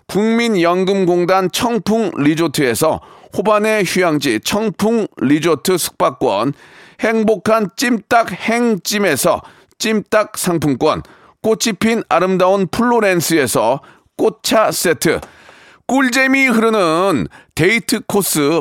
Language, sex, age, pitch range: Korean, male, 40-59, 180-225 Hz